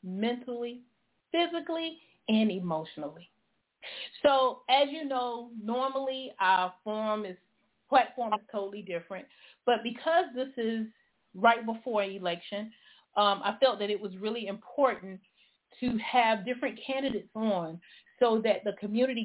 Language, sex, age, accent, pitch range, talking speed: English, female, 30-49, American, 200-250 Hz, 125 wpm